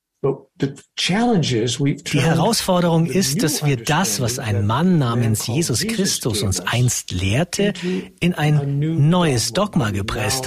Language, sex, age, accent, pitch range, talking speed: German, male, 50-69, German, 130-180 Hz, 115 wpm